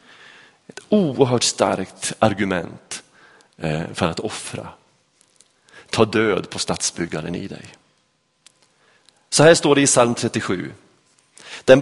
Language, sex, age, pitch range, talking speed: Swedish, male, 30-49, 105-140 Hz, 105 wpm